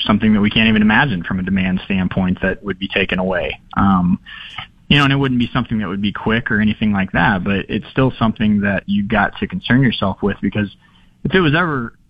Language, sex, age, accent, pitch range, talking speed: English, male, 20-39, American, 105-125 Hz, 235 wpm